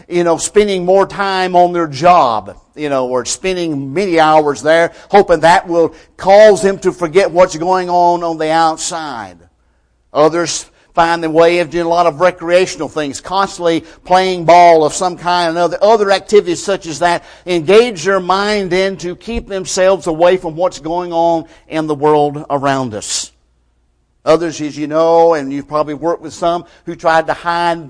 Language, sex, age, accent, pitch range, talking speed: English, male, 50-69, American, 155-185 Hz, 180 wpm